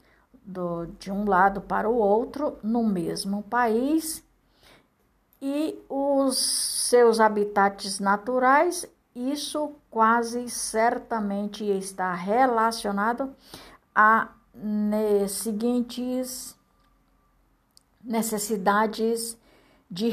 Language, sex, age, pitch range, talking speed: Portuguese, female, 60-79, 205-255 Hz, 75 wpm